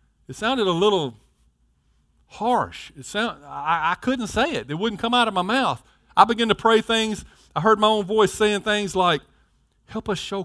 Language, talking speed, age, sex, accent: English, 200 wpm, 50-69, male, American